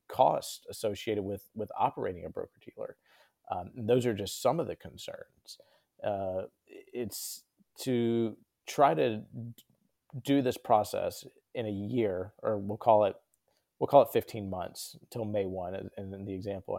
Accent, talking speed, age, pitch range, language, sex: American, 155 wpm, 30-49, 95-110 Hz, English, male